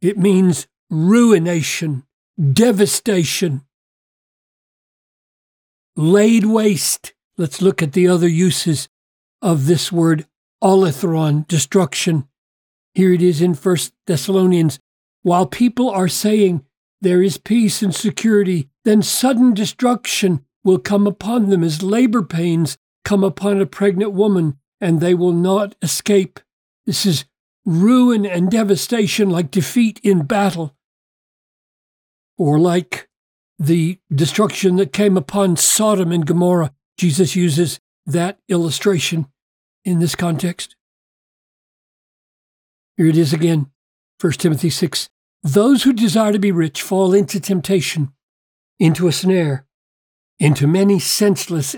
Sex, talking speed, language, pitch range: male, 115 wpm, English, 160-200 Hz